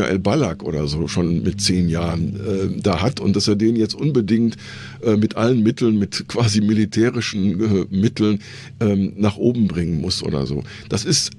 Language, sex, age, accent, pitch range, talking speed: German, male, 50-69, German, 100-115 Hz, 185 wpm